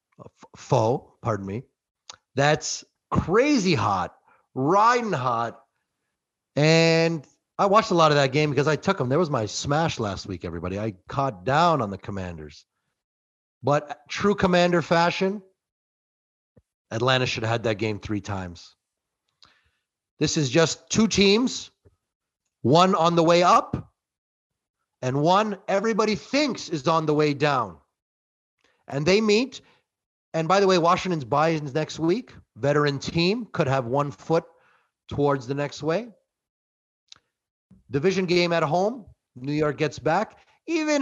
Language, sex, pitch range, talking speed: English, male, 120-175 Hz, 140 wpm